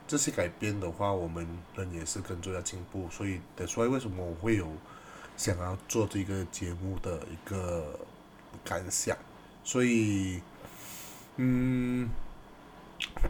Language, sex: Chinese, male